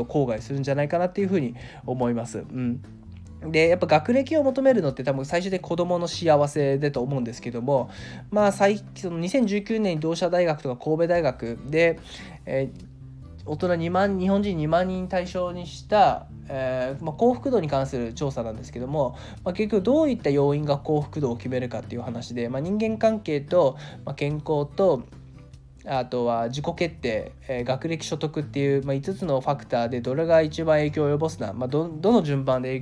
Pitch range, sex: 130-180 Hz, male